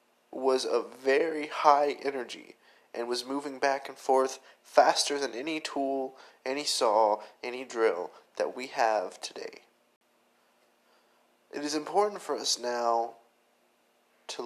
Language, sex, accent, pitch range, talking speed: English, male, American, 120-160 Hz, 125 wpm